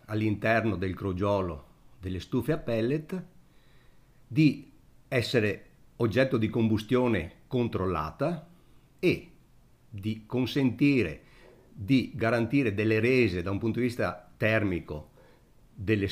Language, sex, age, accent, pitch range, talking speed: Italian, male, 50-69, native, 100-135 Hz, 100 wpm